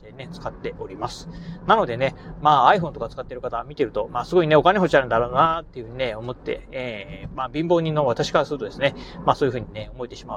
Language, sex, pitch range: Japanese, male, 125-175 Hz